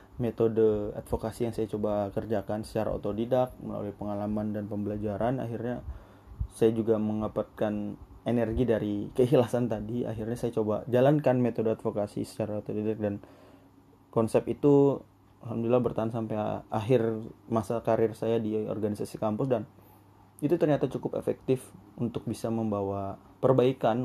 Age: 20-39